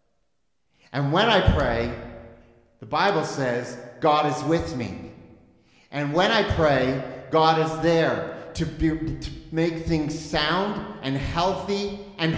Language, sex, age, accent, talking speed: English, male, 40-59, American, 125 wpm